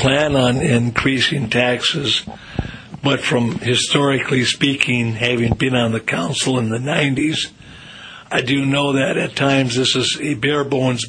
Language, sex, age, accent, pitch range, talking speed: English, male, 60-79, American, 135-165 Hz, 145 wpm